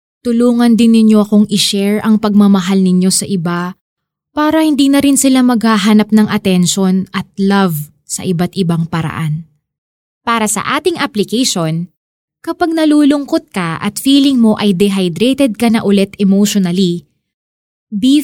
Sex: female